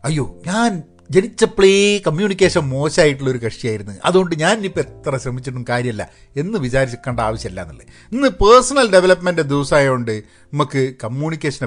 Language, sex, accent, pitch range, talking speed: Malayalam, male, native, 115-160 Hz, 125 wpm